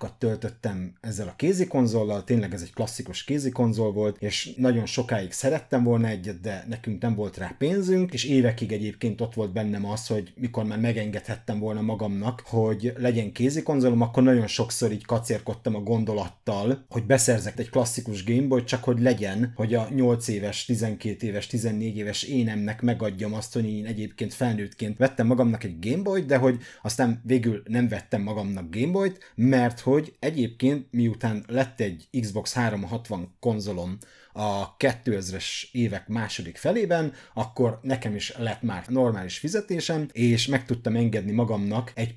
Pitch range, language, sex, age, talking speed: 105-130 Hz, Hungarian, male, 30-49, 160 wpm